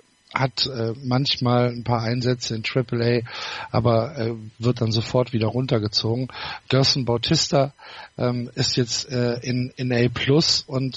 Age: 50-69